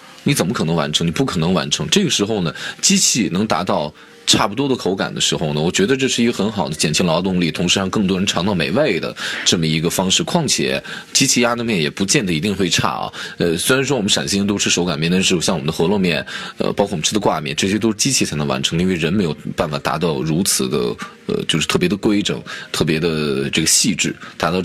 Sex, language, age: male, Chinese, 20-39